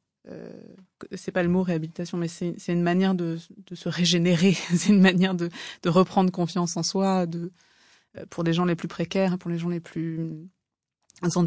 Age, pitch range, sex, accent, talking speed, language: 20-39, 170-190 Hz, female, French, 195 wpm, French